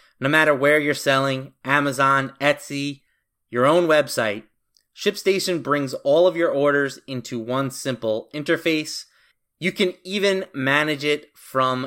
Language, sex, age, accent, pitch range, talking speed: English, male, 20-39, American, 120-150 Hz, 130 wpm